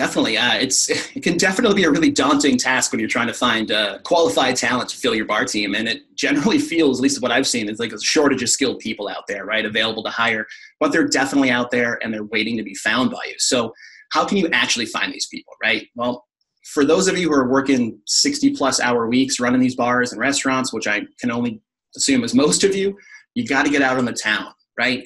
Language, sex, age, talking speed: English, male, 30-49, 245 wpm